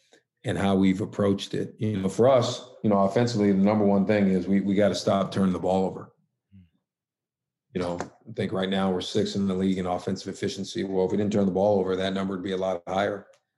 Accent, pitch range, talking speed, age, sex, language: American, 95-110 Hz, 245 wpm, 50-69, male, English